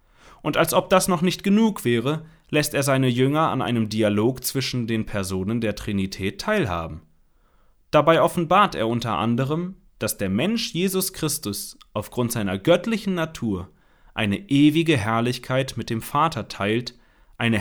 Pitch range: 105-140 Hz